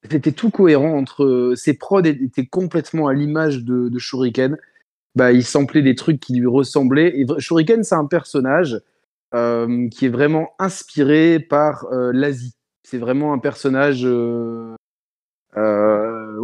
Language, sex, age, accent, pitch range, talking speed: French, male, 20-39, French, 125-150 Hz, 145 wpm